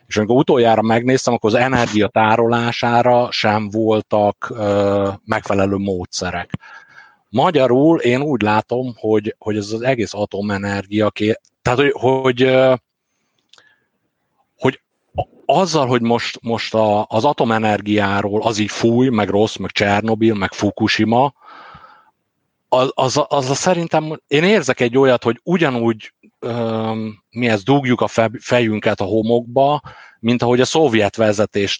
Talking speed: 125 wpm